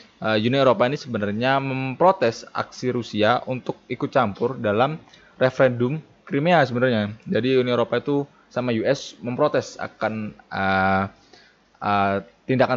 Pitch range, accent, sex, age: 100-125 Hz, native, male, 20-39